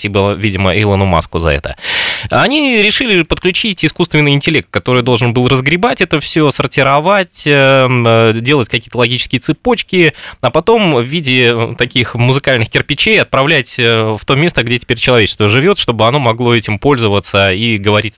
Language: Russian